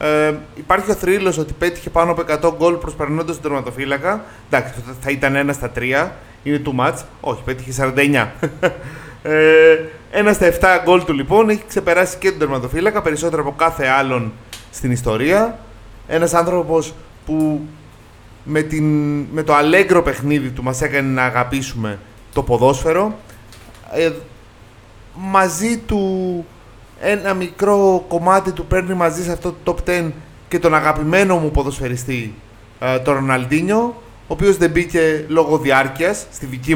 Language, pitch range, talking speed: Greek, 130-175 Hz, 145 wpm